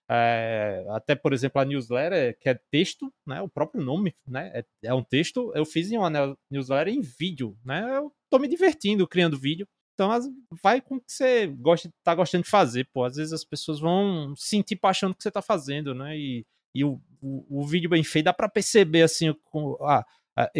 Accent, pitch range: Brazilian, 130-165 Hz